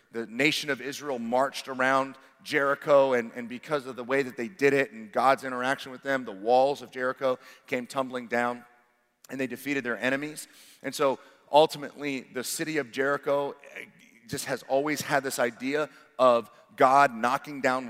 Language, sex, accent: English, male, American